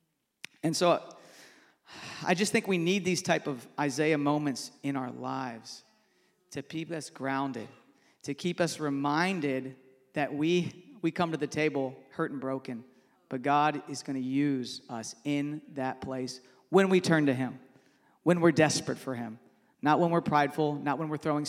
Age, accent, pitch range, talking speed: 40-59, American, 135-175 Hz, 170 wpm